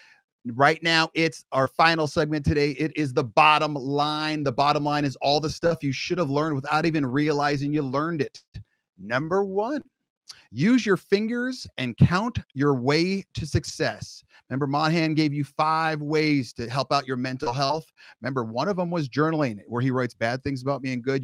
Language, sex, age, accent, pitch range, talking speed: English, male, 30-49, American, 130-160 Hz, 185 wpm